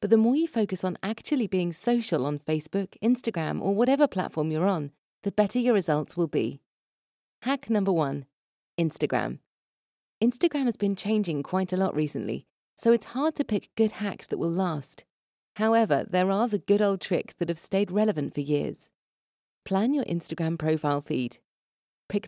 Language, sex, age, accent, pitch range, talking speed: English, female, 30-49, British, 160-220 Hz, 170 wpm